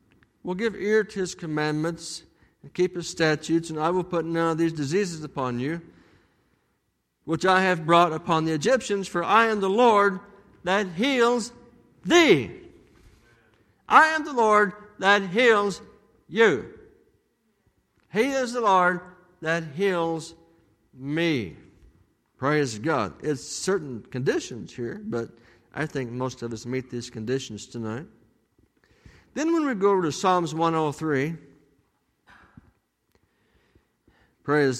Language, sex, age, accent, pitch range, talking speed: English, male, 60-79, American, 150-225 Hz, 130 wpm